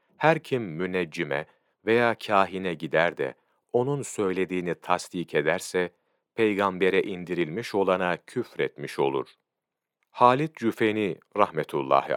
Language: Turkish